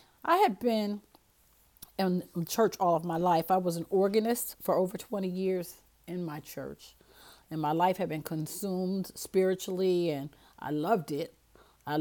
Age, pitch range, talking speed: 40-59, 160-195 Hz, 160 wpm